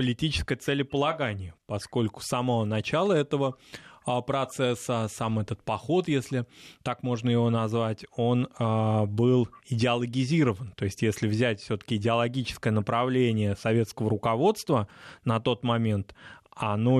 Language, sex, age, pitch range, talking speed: Russian, male, 20-39, 110-140 Hz, 115 wpm